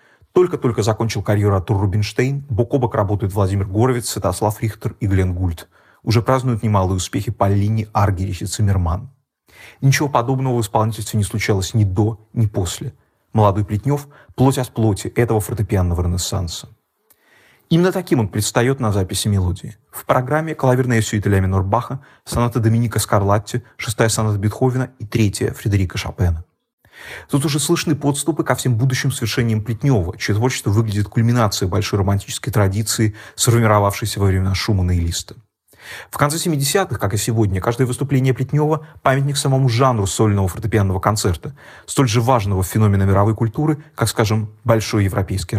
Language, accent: Russian, native